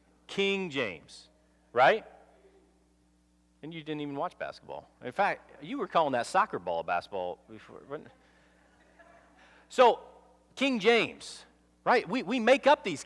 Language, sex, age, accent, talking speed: English, male, 40-59, American, 145 wpm